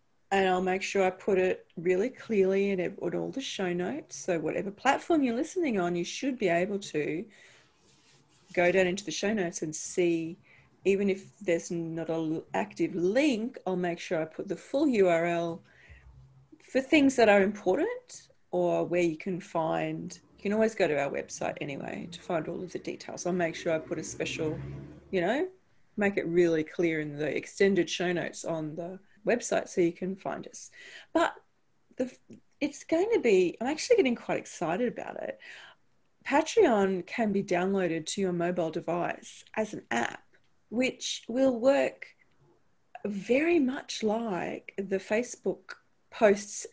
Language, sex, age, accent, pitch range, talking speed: English, female, 40-59, Australian, 175-245 Hz, 170 wpm